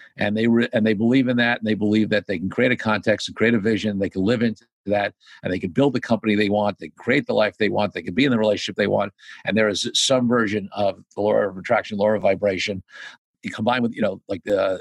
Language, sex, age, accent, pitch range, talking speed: English, male, 50-69, American, 105-130 Hz, 275 wpm